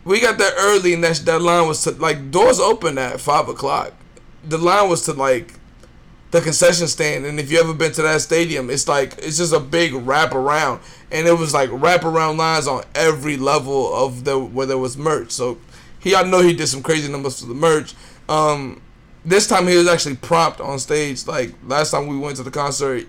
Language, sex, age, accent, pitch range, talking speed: English, male, 20-39, American, 135-170 Hz, 220 wpm